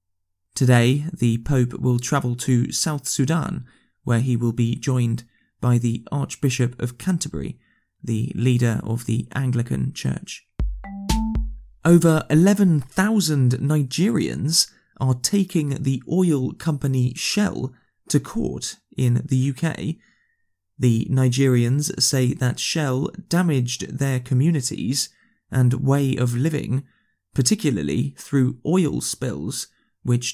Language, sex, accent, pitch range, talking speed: English, male, British, 125-150 Hz, 110 wpm